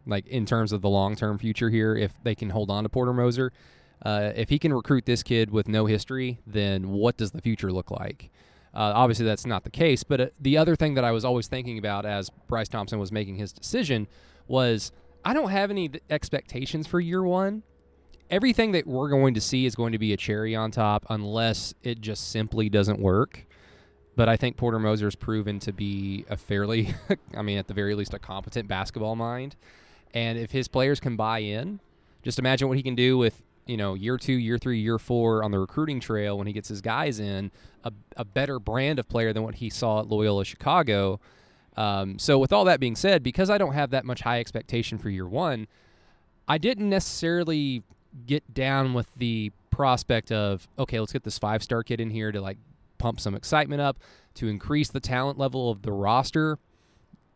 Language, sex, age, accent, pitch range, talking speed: English, male, 20-39, American, 105-130 Hz, 210 wpm